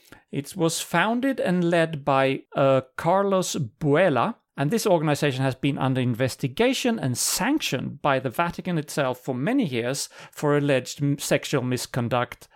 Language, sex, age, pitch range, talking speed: English, male, 40-59, 135-180 Hz, 140 wpm